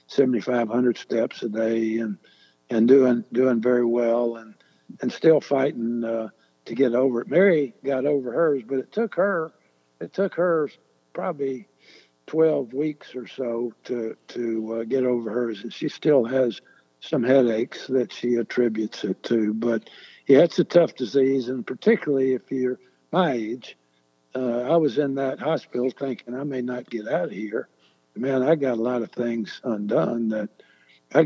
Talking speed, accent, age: 175 wpm, American, 60-79